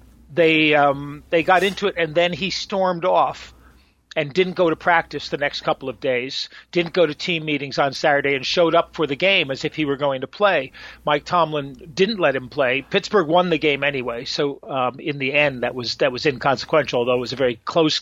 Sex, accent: male, American